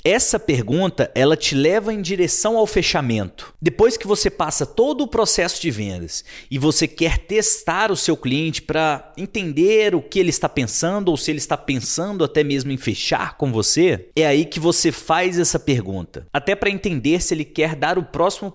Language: Portuguese